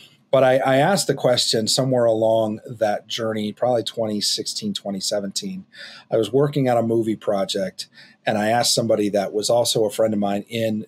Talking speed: 175 wpm